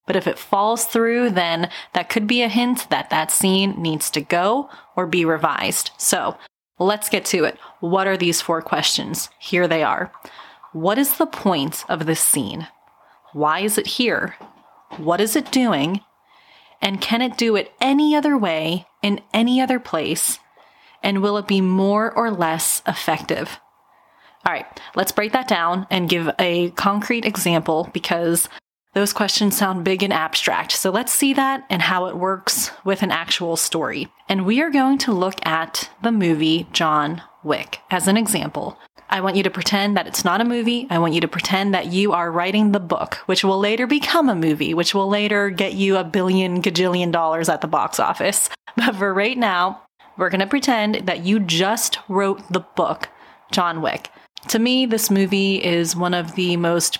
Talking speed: 185 wpm